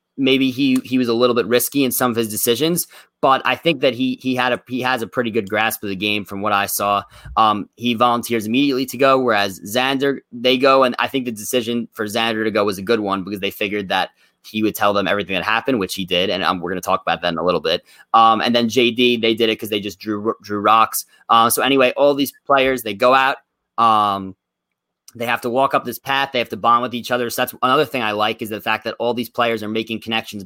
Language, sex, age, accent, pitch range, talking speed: English, male, 20-39, American, 100-120 Hz, 265 wpm